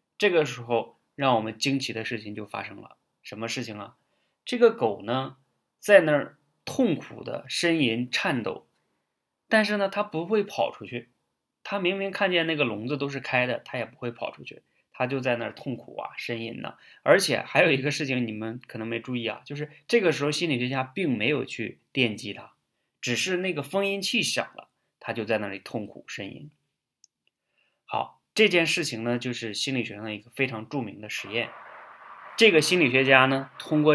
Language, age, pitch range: Chinese, 20-39, 115-150 Hz